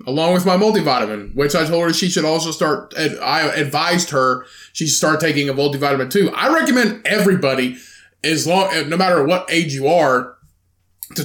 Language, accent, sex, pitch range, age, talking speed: English, American, male, 120-170 Hz, 20-39, 180 wpm